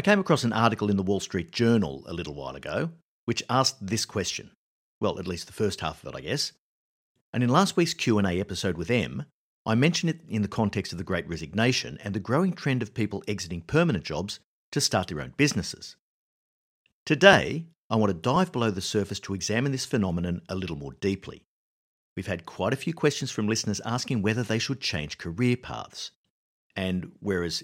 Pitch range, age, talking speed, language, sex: 90-130 Hz, 50-69, 200 wpm, English, male